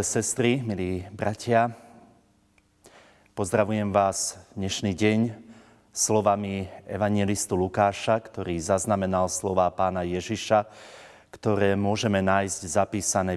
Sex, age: male, 30-49